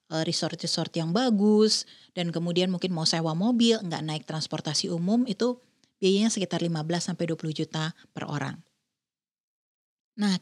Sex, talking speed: female, 120 wpm